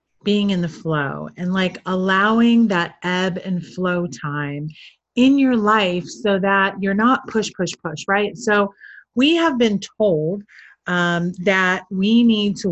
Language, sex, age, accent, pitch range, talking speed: English, female, 30-49, American, 175-215 Hz, 155 wpm